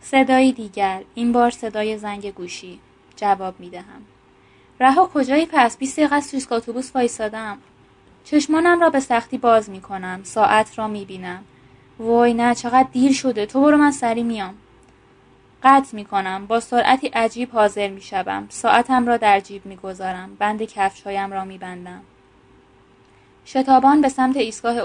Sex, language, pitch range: female, Persian, 195-245 Hz